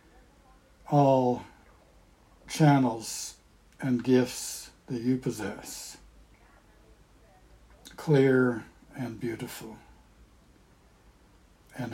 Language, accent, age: English, American, 60-79